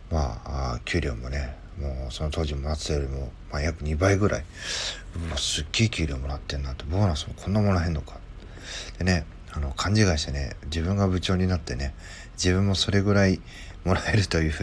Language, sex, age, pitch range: Japanese, male, 40-59, 75-95 Hz